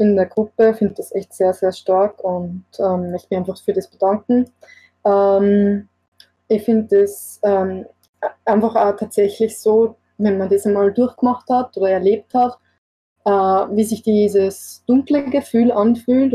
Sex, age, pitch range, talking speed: female, 20-39, 200-230 Hz, 160 wpm